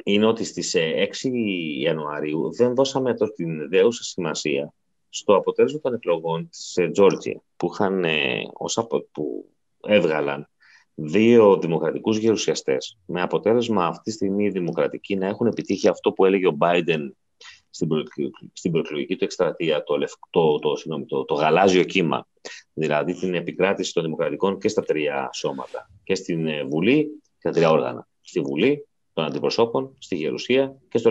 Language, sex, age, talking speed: Greek, male, 30-49, 140 wpm